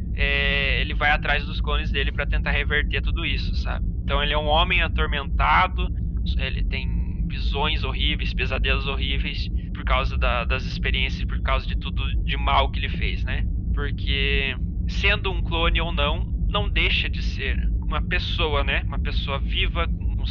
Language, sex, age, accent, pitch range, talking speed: Portuguese, male, 20-39, Brazilian, 75-90 Hz, 165 wpm